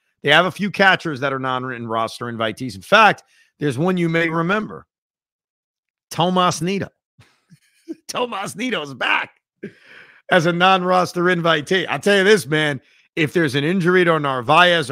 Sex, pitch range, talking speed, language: male, 130-180 Hz, 155 wpm, English